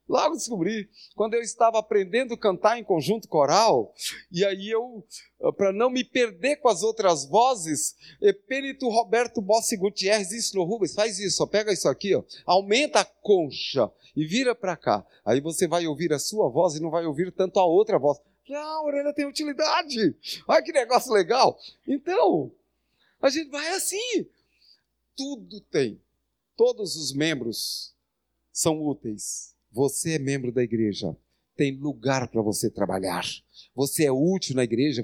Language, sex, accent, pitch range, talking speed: Portuguese, male, Brazilian, 170-250 Hz, 160 wpm